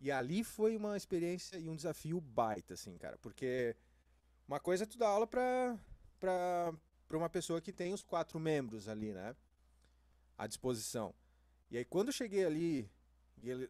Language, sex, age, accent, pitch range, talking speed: Portuguese, male, 30-49, Brazilian, 120-185 Hz, 170 wpm